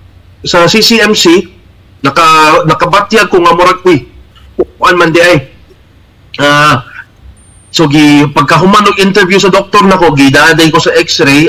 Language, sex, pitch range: English, male, 145-185 Hz